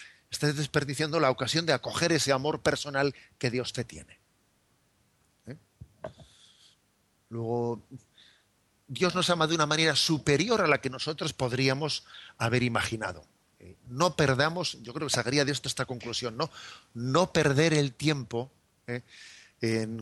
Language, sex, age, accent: Spanish, male, 40-59, Spanish